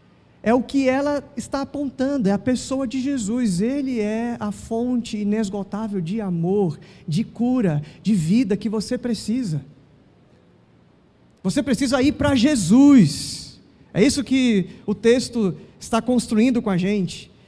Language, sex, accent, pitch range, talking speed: Portuguese, male, Brazilian, 195-250 Hz, 135 wpm